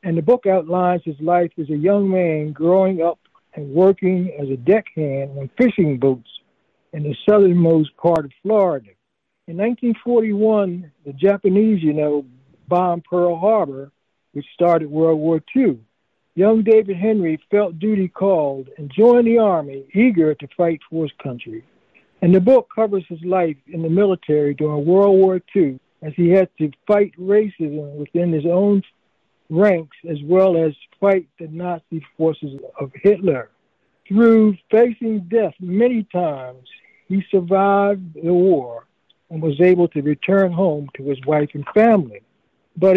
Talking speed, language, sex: 150 wpm, English, male